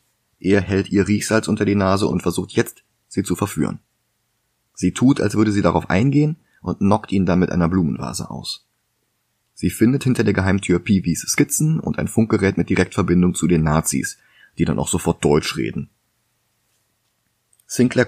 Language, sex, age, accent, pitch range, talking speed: German, male, 30-49, German, 90-115 Hz, 165 wpm